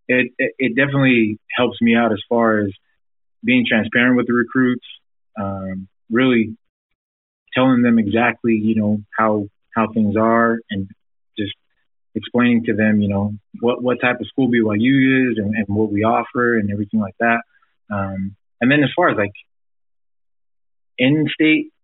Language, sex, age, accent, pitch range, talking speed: English, male, 20-39, American, 105-120 Hz, 155 wpm